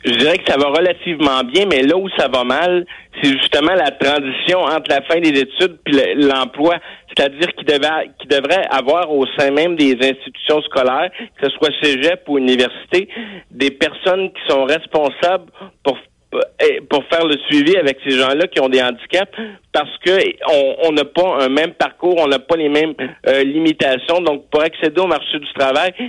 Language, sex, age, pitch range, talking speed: French, male, 50-69, 140-175 Hz, 185 wpm